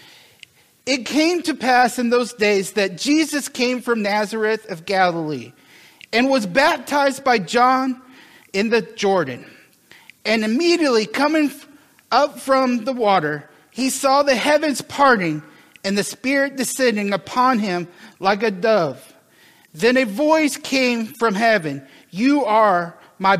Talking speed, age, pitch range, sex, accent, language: 135 wpm, 40-59, 195-270 Hz, male, American, English